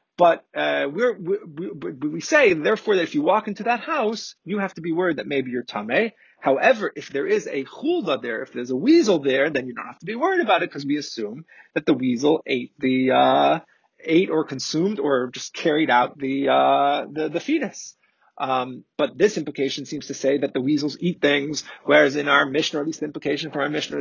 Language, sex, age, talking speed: English, male, 30-49, 220 wpm